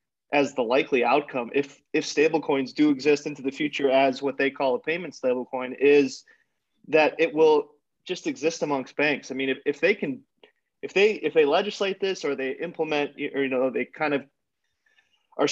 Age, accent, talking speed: 30-49, American, 195 wpm